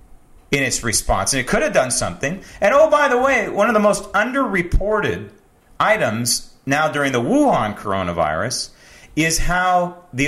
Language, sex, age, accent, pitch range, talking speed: English, male, 40-59, American, 130-210 Hz, 165 wpm